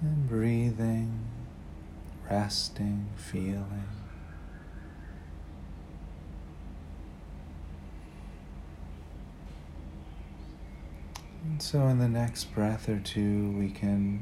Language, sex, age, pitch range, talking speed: English, male, 40-59, 80-100 Hz, 60 wpm